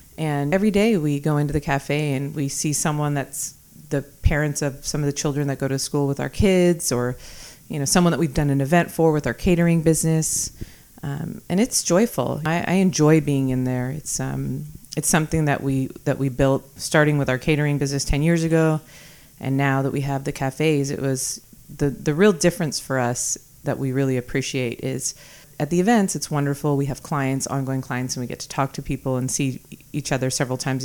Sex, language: female, English